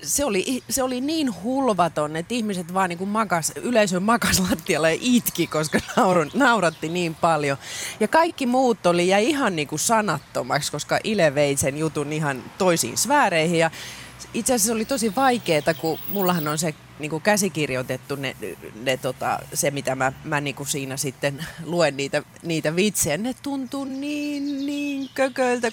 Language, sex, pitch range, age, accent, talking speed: Finnish, female, 140-215 Hz, 30-49, native, 150 wpm